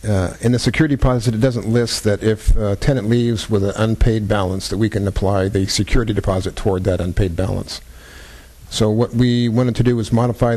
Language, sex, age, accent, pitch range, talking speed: English, male, 50-69, American, 90-115 Hz, 205 wpm